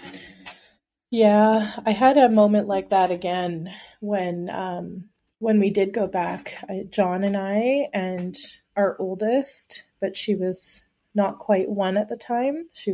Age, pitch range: 30-49, 185-220 Hz